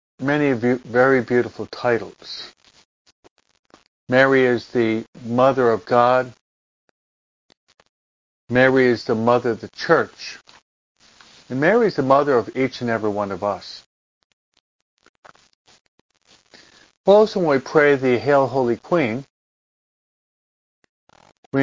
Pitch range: 110-130 Hz